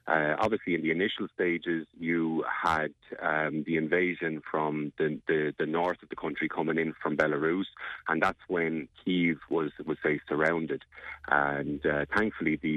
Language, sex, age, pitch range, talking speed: English, male, 30-49, 75-80 Hz, 165 wpm